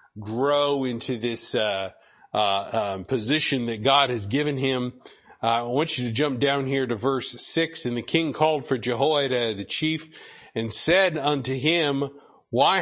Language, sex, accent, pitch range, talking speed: English, male, American, 125-155 Hz, 170 wpm